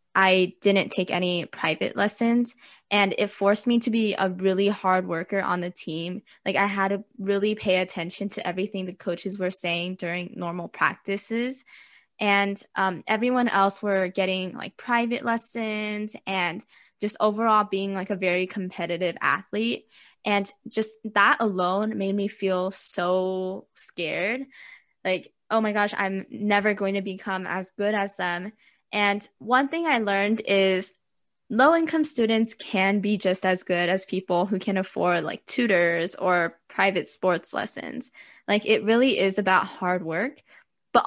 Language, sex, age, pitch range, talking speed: English, female, 10-29, 185-220 Hz, 155 wpm